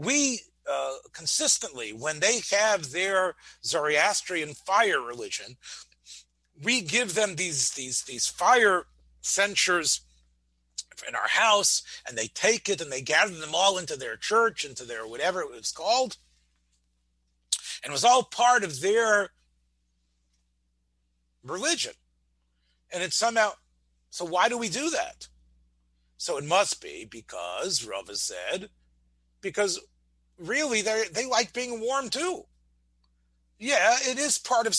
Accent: American